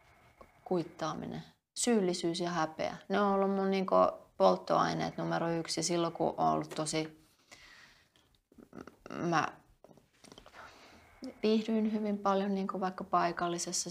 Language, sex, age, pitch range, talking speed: Finnish, female, 30-49, 150-180 Hz, 105 wpm